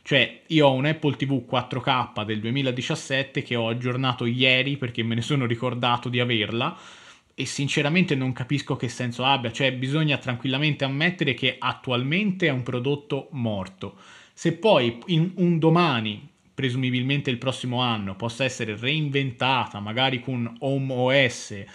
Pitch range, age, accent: 120-140 Hz, 20-39, native